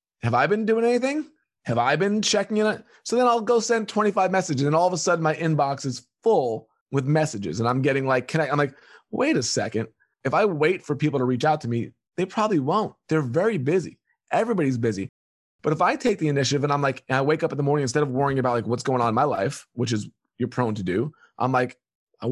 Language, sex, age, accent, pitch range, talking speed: English, male, 20-39, American, 140-205 Hz, 255 wpm